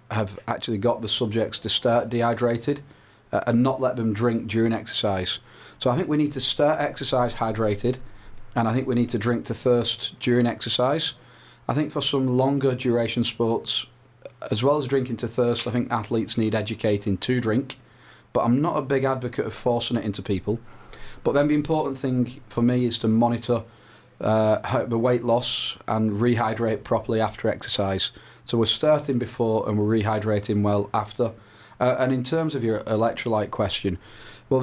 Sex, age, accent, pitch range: male, 30-49, British, 110-125 Hz